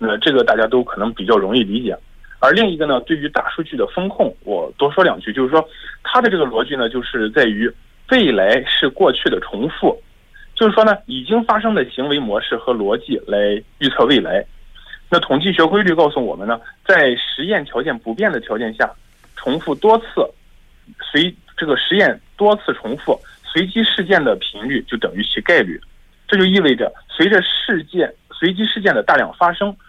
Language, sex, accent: Korean, male, Chinese